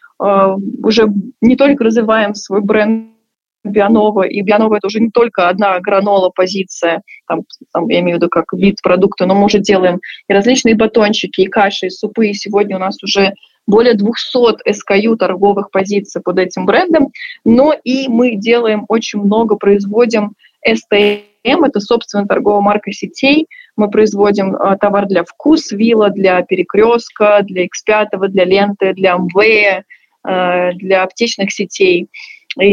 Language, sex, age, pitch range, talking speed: Russian, female, 20-39, 200-240 Hz, 150 wpm